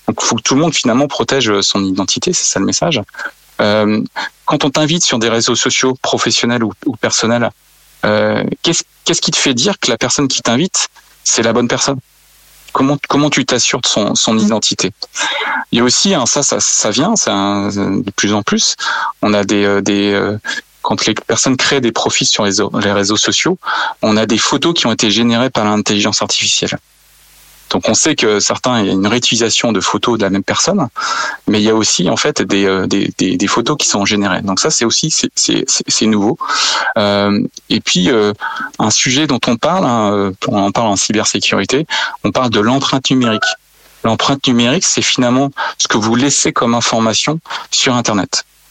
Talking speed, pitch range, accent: 200 wpm, 100-130 Hz, French